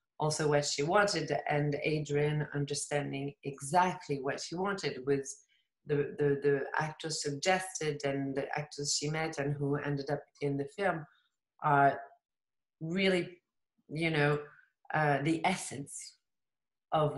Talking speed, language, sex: 130 wpm, English, female